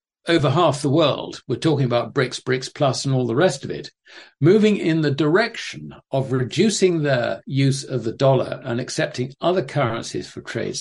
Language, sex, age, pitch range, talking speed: English, male, 60-79, 125-155 Hz, 185 wpm